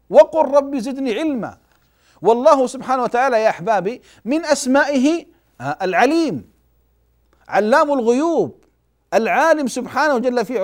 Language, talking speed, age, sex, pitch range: Arabic, 100 wpm, 50-69, male, 155-255 Hz